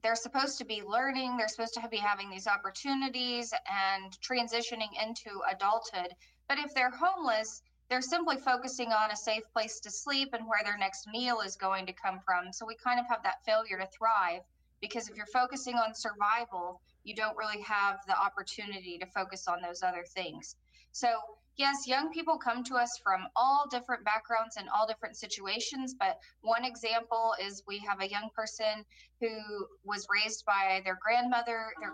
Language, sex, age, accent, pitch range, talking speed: English, female, 20-39, American, 195-235 Hz, 180 wpm